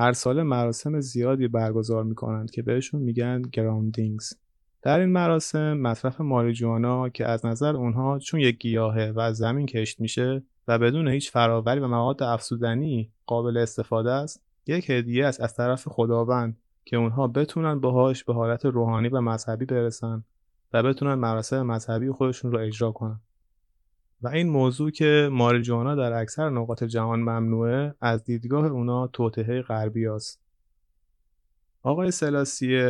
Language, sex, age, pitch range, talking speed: Persian, male, 30-49, 115-135 Hz, 140 wpm